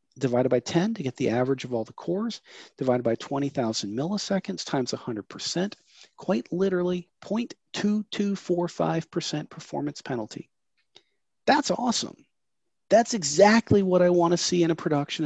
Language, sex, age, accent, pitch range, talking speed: English, male, 40-59, American, 130-185 Hz, 130 wpm